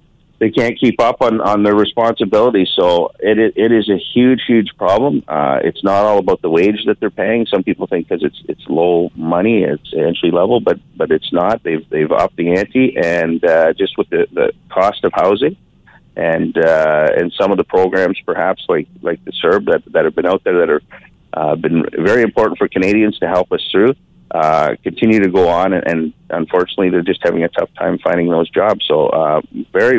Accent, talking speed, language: American, 210 wpm, English